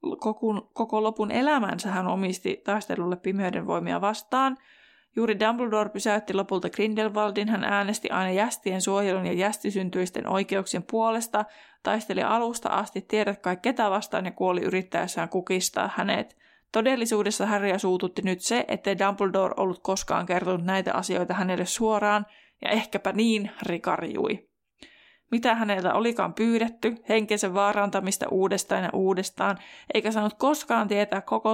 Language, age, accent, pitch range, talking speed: Finnish, 20-39, native, 190-220 Hz, 125 wpm